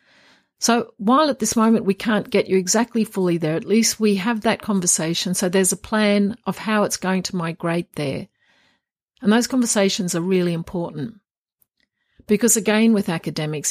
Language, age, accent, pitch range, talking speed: English, 50-69, Australian, 170-215 Hz, 170 wpm